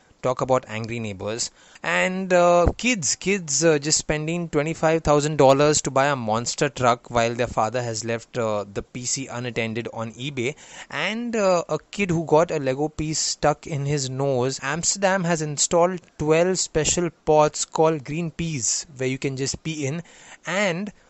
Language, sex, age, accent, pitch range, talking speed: English, male, 20-39, Indian, 130-165 Hz, 170 wpm